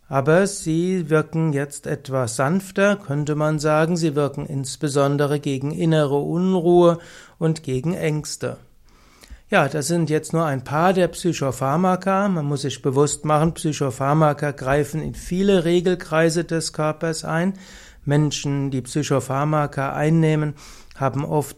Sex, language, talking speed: male, German, 130 wpm